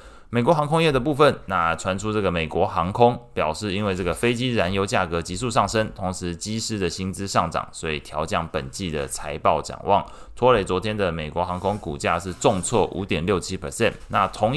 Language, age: Chinese, 20-39